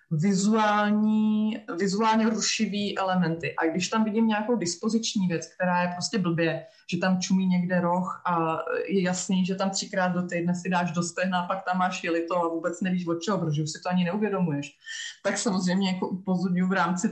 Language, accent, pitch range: Czech, native, 175-205 Hz